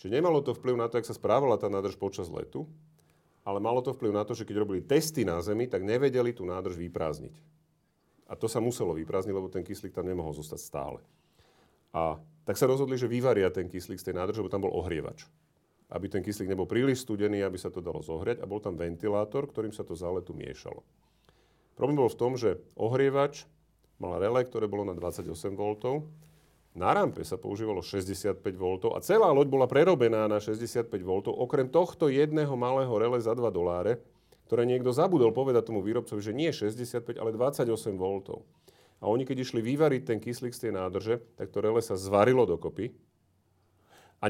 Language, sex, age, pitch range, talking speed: Slovak, male, 40-59, 95-130 Hz, 190 wpm